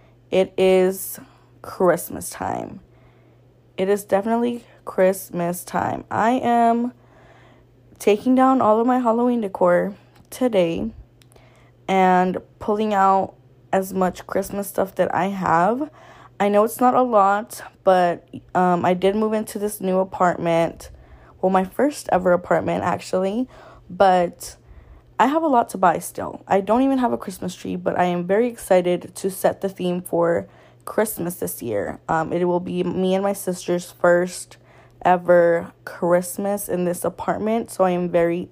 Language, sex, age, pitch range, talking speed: English, female, 10-29, 170-215 Hz, 150 wpm